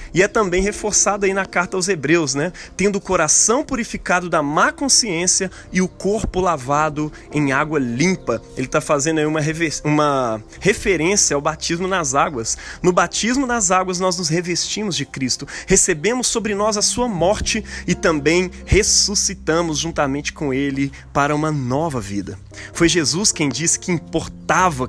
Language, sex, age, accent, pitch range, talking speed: Portuguese, male, 20-39, Brazilian, 145-185 Hz, 160 wpm